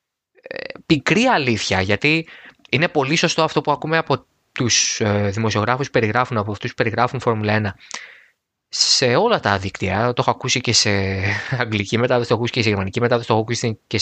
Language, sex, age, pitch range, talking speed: Greek, male, 20-39, 105-145 Hz, 175 wpm